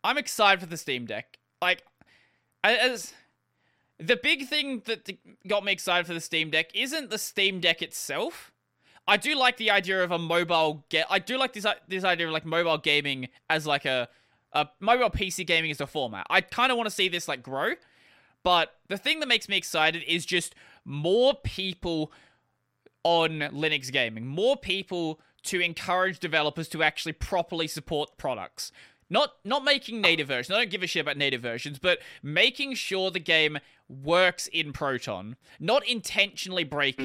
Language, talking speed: English, 180 wpm